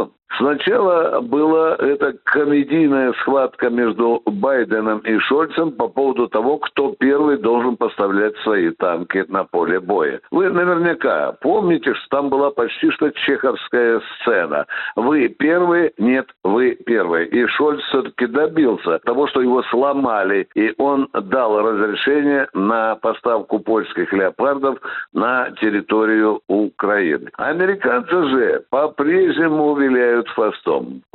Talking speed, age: 115 wpm, 60-79